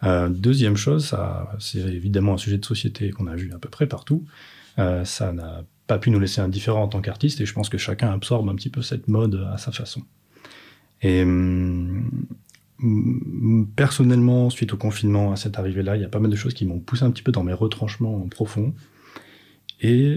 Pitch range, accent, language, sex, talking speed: 100-130 Hz, French, French, male, 205 wpm